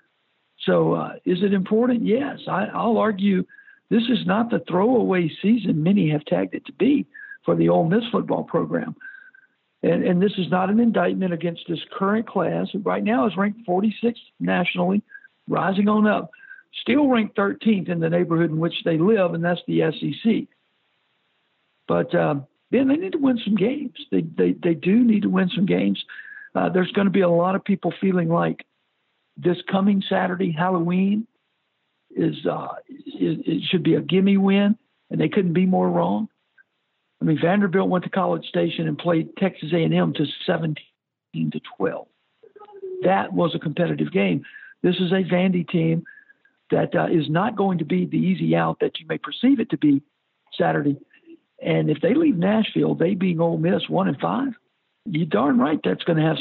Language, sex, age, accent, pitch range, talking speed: English, male, 60-79, American, 170-235 Hz, 180 wpm